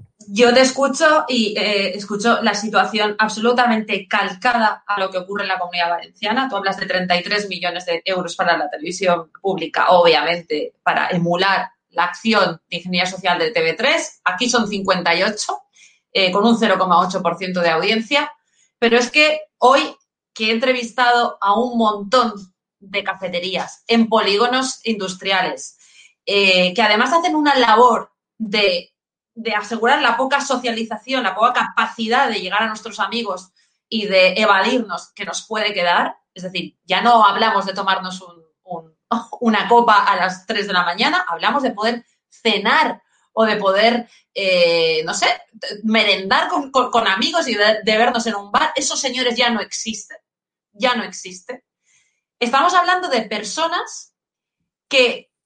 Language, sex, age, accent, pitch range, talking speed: Spanish, female, 30-49, Spanish, 190-245 Hz, 150 wpm